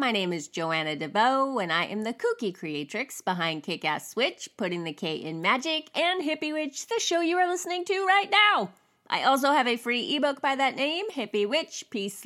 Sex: female